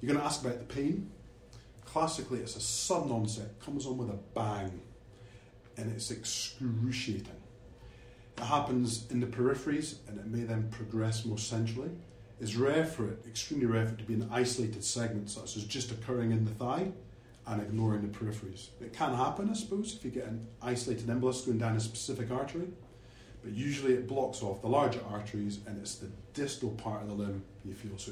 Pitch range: 110-130 Hz